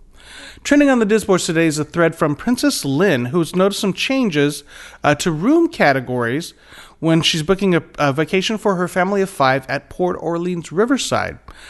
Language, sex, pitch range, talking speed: English, male, 140-180 Hz, 175 wpm